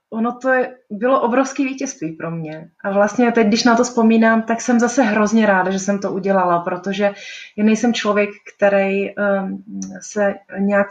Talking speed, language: 170 wpm, Czech